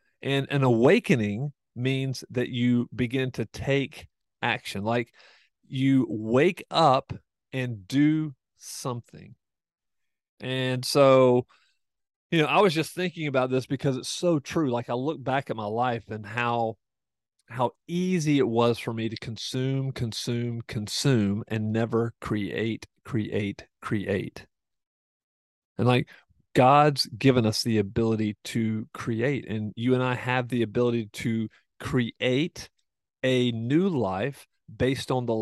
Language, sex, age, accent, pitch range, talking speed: English, male, 40-59, American, 115-145 Hz, 135 wpm